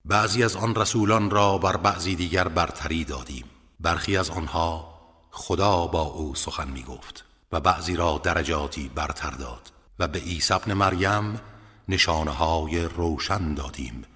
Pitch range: 80-105 Hz